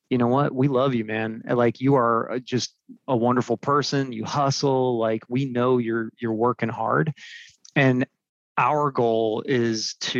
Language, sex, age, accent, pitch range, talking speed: English, male, 30-49, American, 115-135 Hz, 165 wpm